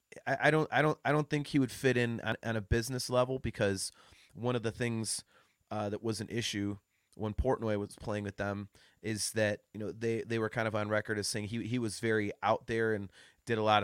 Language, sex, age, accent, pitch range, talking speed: English, male, 30-49, American, 100-120 Hz, 240 wpm